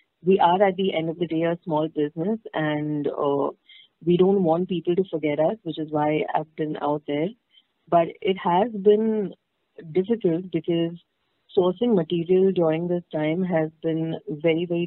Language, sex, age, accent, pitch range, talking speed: English, female, 30-49, Indian, 155-180 Hz, 170 wpm